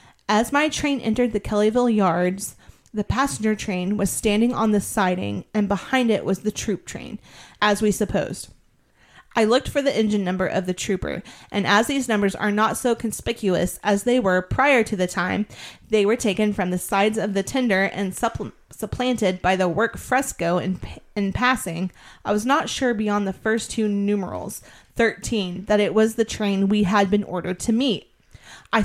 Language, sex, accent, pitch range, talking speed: English, female, American, 190-225 Hz, 185 wpm